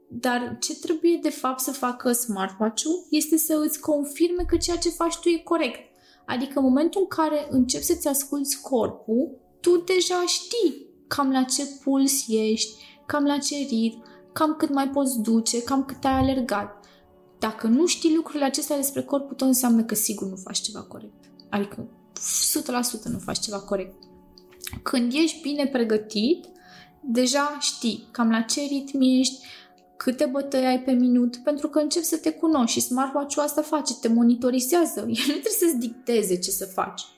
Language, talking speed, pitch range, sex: Romanian, 175 wpm, 220-295 Hz, female